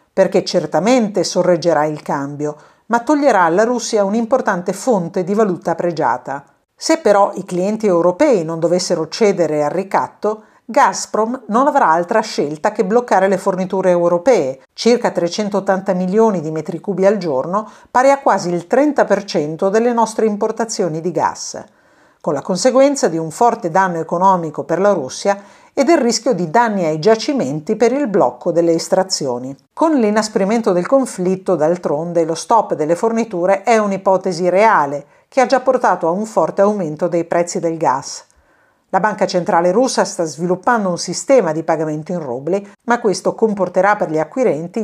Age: 50-69